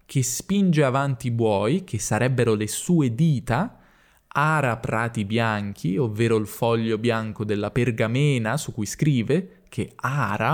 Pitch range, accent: 105-145 Hz, native